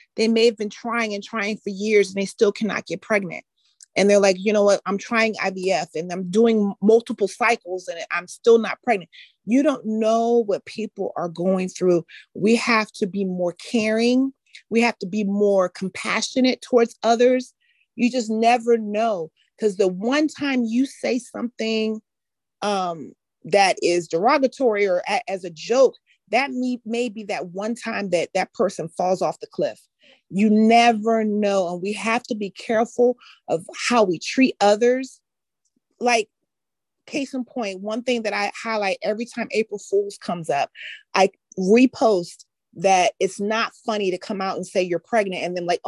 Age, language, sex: 40-59, English, female